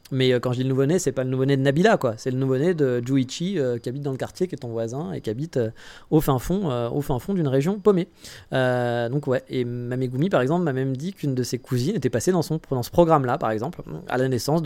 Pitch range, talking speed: 125-165 Hz, 280 wpm